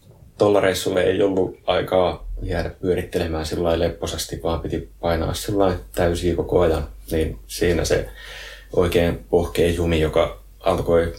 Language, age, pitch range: Finnish, 30-49, 80-95 Hz